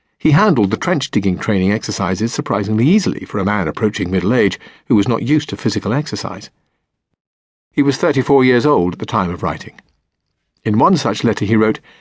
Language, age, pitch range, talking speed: English, 50-69, 100-145 Hz, 185 wpm